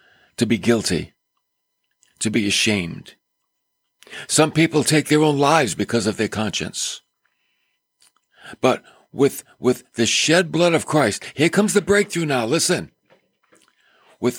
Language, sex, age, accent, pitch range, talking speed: English, male, 60-79, American, 110-150 Hz, 130 wpm